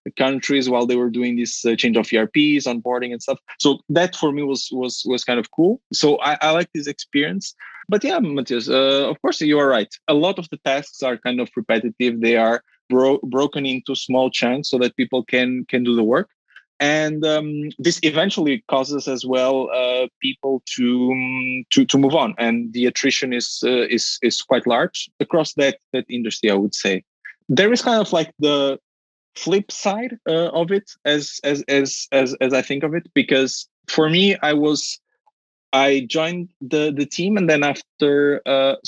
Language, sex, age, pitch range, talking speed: English, male, 20-39, 130-160 Hz, 195 wpm